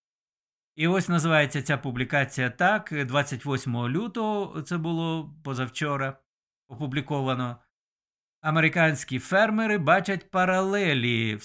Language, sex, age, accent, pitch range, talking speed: Ukrainian, male, 50-69, native, 135-185 Hz, 90 wpm